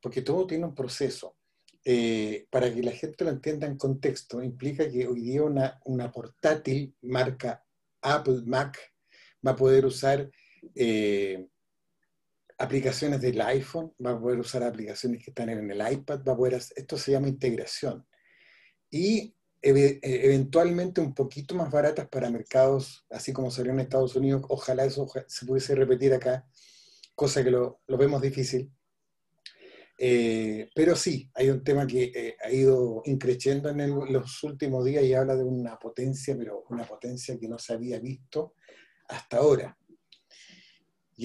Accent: Mexican